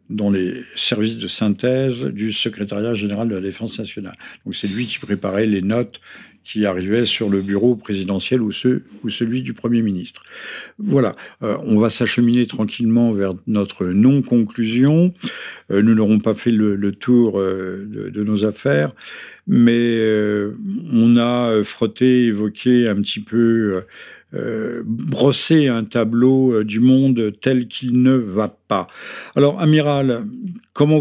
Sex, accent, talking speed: male, French, 155 wpm